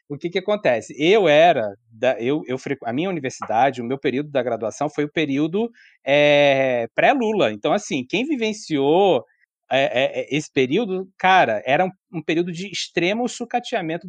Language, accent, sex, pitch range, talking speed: Portuguese, Brazilian, male, 140-195 Hz, 160 wpm